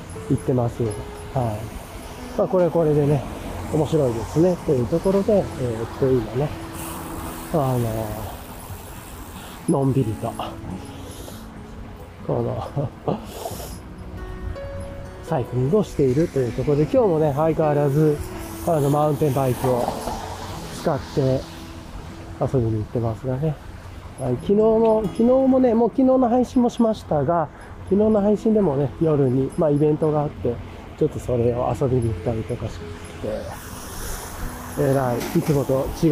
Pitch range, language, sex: 110-155 Hz, Japanese, male